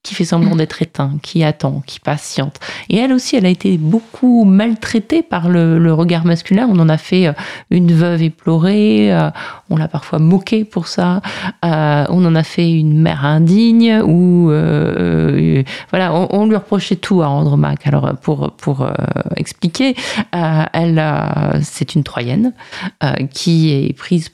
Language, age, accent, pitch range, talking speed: French, 30-49, French, 145-180 Hz, 170 wpm